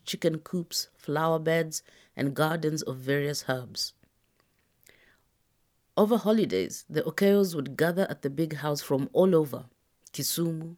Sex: female